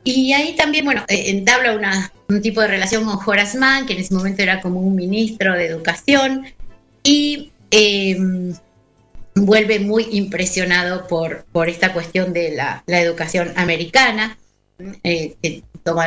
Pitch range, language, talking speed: 170-240 Hz, English, 145 wpm